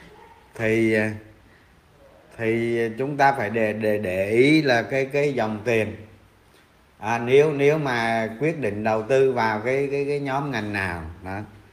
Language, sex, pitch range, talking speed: Vietnamese, male, 95-115 Hz, 155 wpm